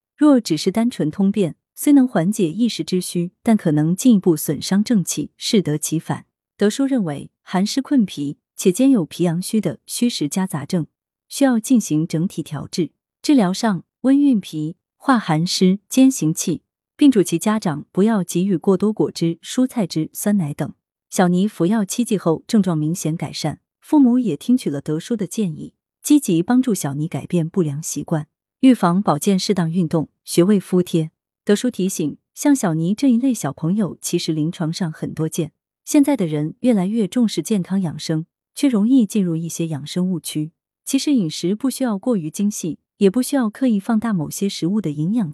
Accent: native